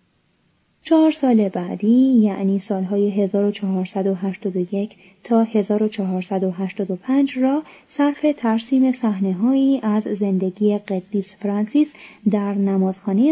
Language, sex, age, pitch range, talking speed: Persian, female, 30-49, 195-240 Hz, 80 wpm